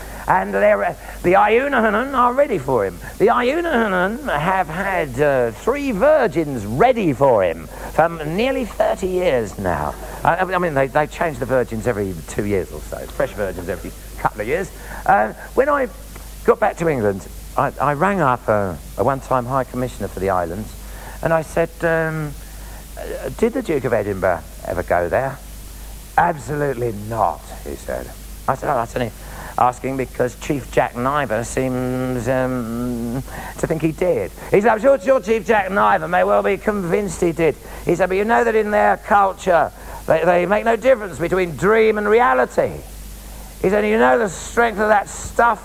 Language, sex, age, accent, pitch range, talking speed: English, male, 50-69, British, 125-210 Hz, 175 wpm